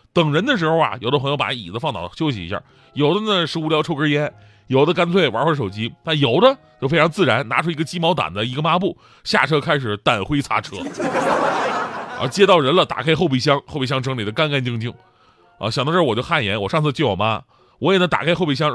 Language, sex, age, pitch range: Chinese, male, 30-49, 120-165 Hz